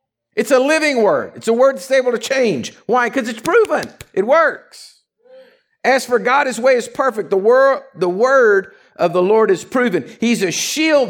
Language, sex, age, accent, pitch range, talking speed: English, male, 50-69, American, 190-255 Hz, 185 wpm